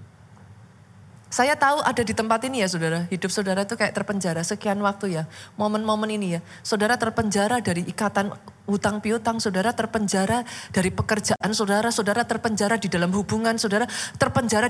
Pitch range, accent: 165-230 Hz, native